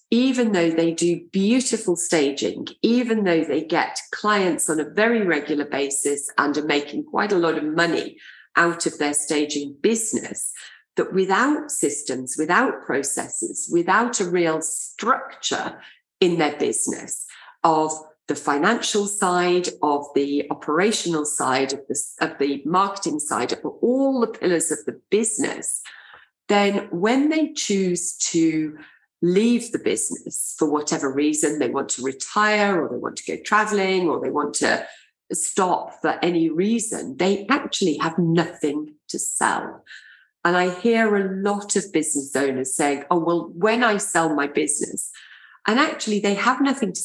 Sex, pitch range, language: female, 155-215 Hz, English